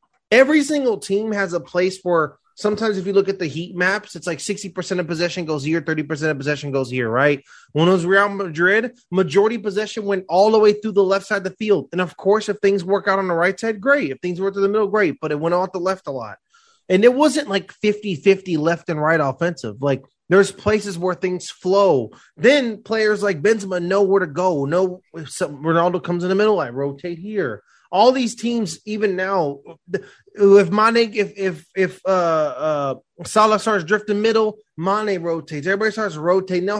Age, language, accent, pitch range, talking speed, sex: 20-39, English, American, 145-200 Hz, 210 wpm, male